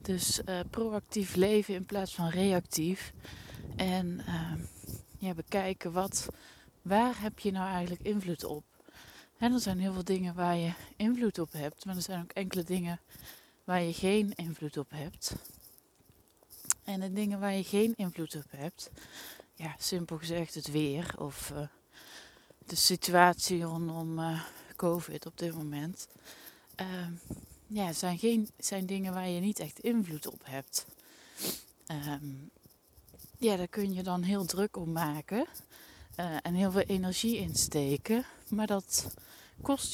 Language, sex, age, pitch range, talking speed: Dutch, female, 20-39, 160-200 Hz, 150 wpm